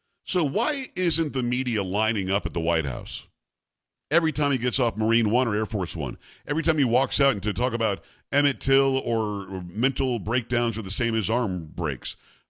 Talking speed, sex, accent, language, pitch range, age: 195 wpm, male, American, English, 115-155 Hz, 50-69